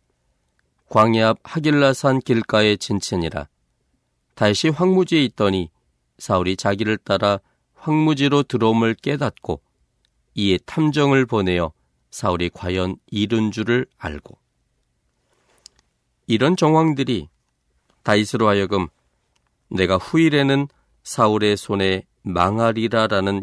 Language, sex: Korean, male